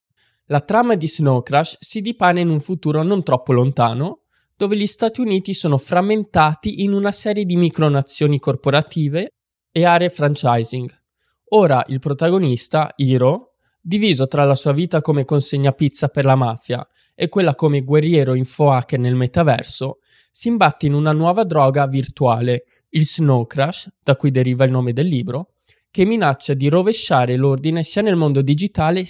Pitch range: 135-175 Hz